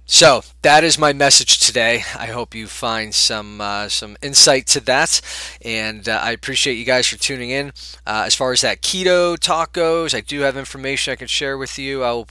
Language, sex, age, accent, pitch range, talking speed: English, male, 20-39, American, 100-140 Hz, 215 wpm